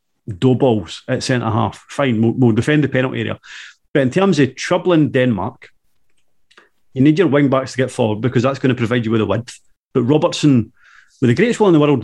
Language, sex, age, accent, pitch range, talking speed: English, male, 30-49, British, 120-150 Hz, 210 wpm